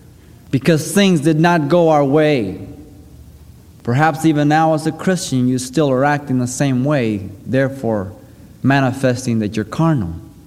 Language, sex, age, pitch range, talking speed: English, male, 30-49, 135-175 Hz, 145 wpm